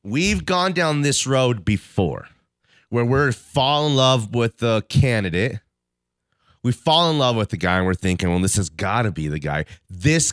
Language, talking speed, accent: English, 190 wpm, American